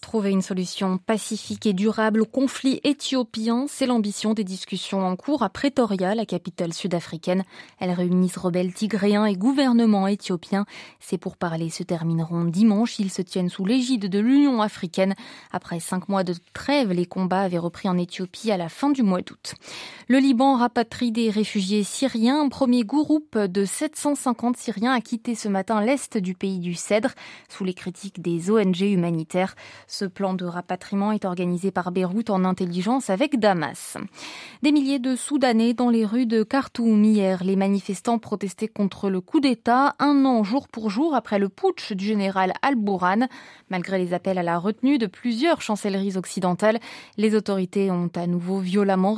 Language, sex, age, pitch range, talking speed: French, female, 20-39, 185-235 Hz, 170 wpm